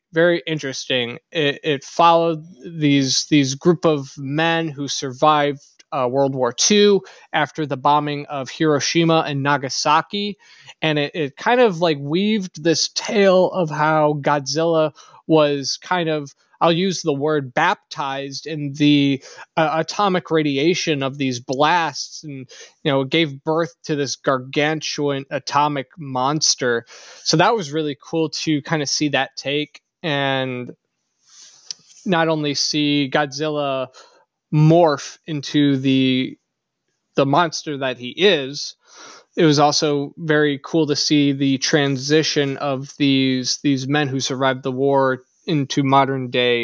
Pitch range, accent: 135-165 Hz, American